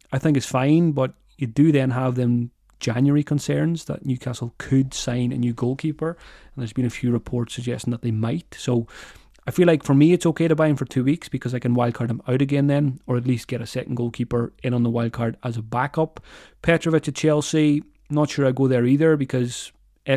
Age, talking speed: 30-49, 225 wpm